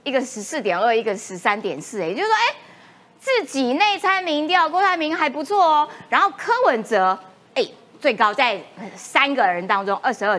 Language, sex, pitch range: Chinese, female, 225-355 Hz